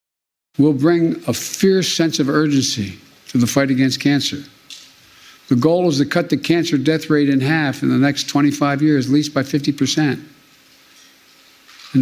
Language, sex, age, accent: English, male, 60-79, American